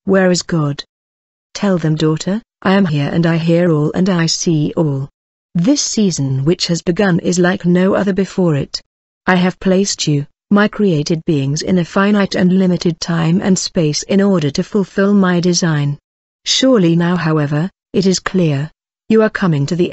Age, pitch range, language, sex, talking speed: 40-59, 160-190 Hz, English, female, 180 wpm